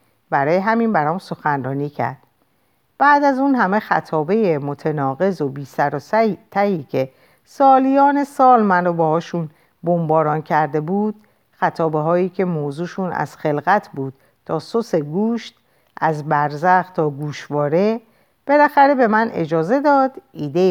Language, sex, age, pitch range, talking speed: Persian, female, 50-69, 145-220 Hz, 130 wpm